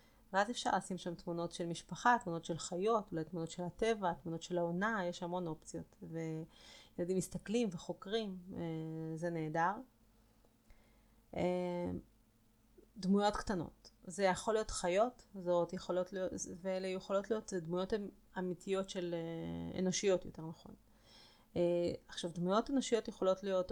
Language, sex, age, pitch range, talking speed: Hebrew, female, 30-49, 165-190 Hz, 130 wpm